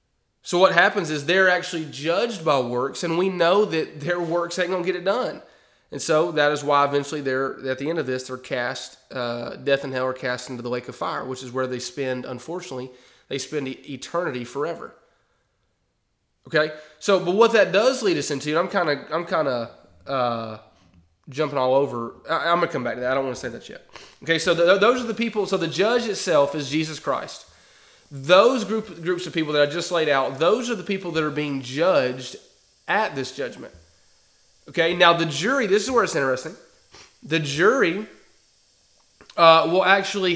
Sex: male